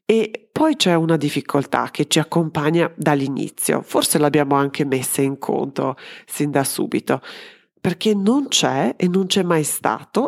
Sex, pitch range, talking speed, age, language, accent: female, 145-185 Hz, 150 wpm, 30-49, Italian, native